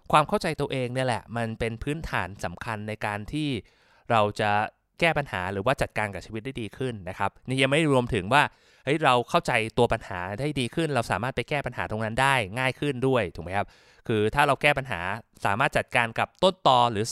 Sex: male